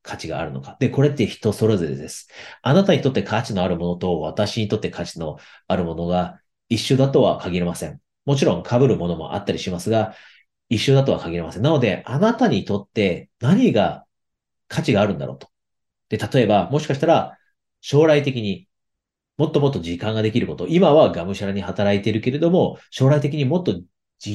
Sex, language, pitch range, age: male, Japanese, 90-135 Hz, 40-59